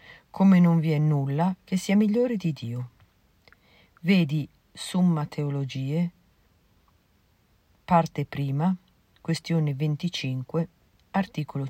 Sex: female